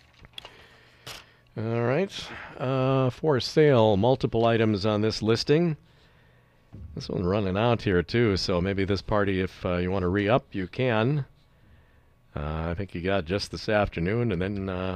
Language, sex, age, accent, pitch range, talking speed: English, male, 50-69, American, 90-125 Hz, 155 wpm